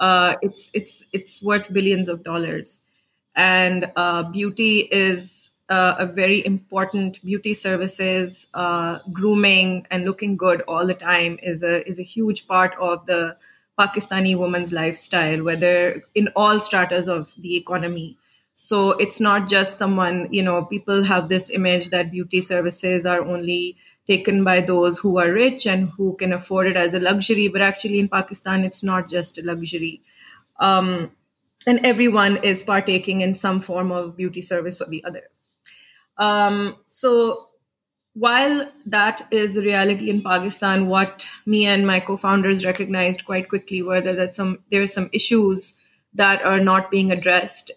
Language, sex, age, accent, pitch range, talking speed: English, female, 30-49, Indian, 180-200 Hz, 160 wpm